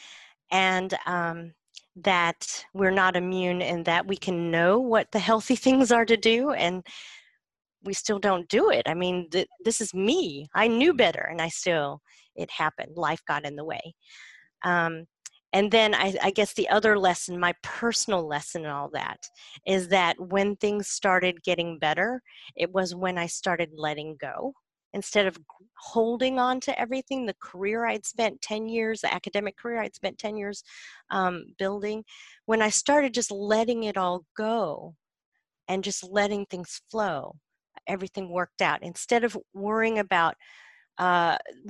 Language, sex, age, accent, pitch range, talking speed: English, female, 30-49, American, 180-220 Hz, 165 wpm